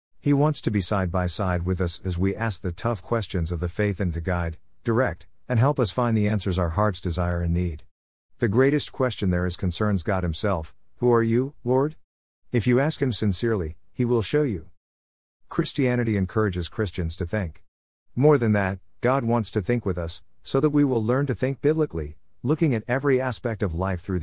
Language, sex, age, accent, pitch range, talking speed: English, male, 50-69, American, 90-125 Hz, 200 wpm